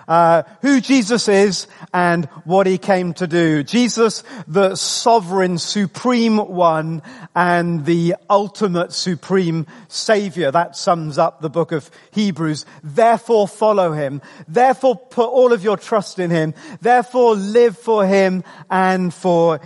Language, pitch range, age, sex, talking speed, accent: English, 170-215 Hz, 40-59, male, 135 wpm, British